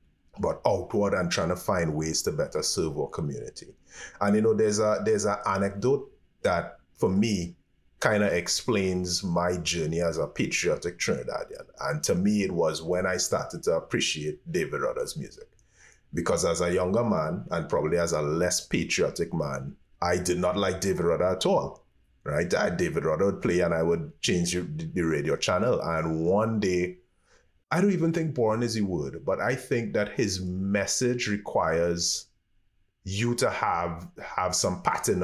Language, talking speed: English, 175 wpm